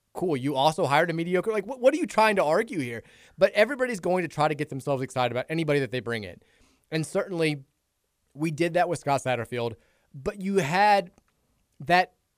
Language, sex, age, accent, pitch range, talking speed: English, male, 20-39, American, 125-180 Hz, 200 wpm